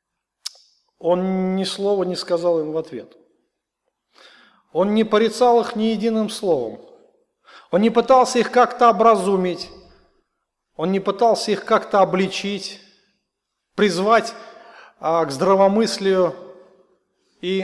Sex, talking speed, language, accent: male, 110 wpm, Russian, native